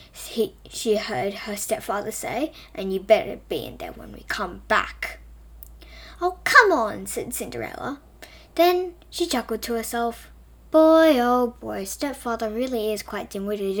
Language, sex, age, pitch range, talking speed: English, female, 10-29, 210-295 Hz, 145 wpm